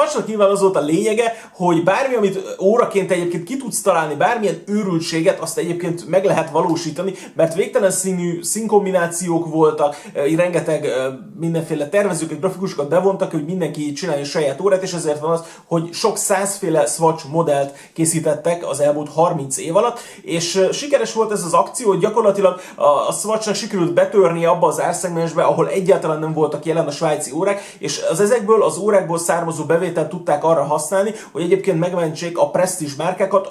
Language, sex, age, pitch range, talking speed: Hungarian, male, 30-49, 160-200 Hz, 160 wpm